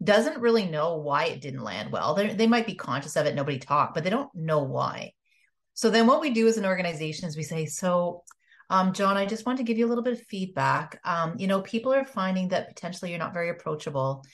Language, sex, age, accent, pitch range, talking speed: English, female, 30-49, American, 165-230 Hz, 245 wpm